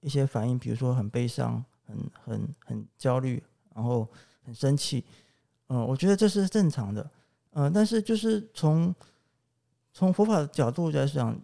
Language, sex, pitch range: Chinese, male, 120-160 Hz